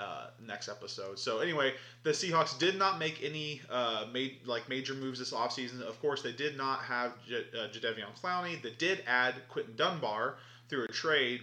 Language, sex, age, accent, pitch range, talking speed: English, male, 30-49, American, 115-135 Hz, 195 wpm